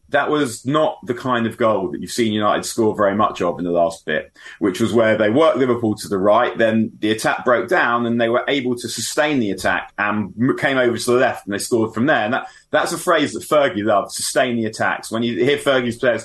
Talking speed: 250 wpm